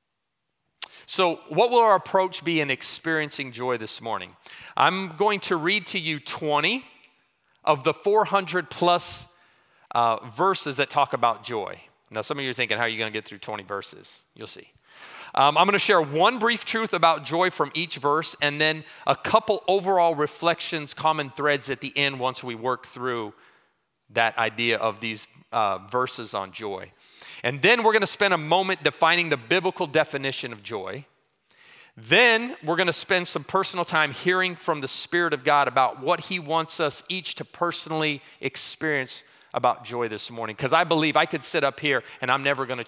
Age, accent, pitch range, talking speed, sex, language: 30-49, American, 125-175 Hz, 190 wpm, male, English